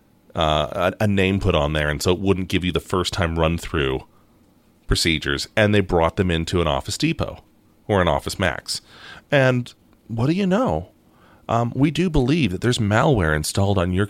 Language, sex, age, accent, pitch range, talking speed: English, male, 30-49, American, 85-115 Hz, 195 wpm